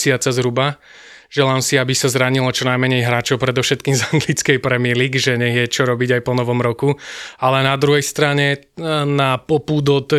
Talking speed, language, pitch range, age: 175 wpm, Slovak, 130-145 Hz, 20-39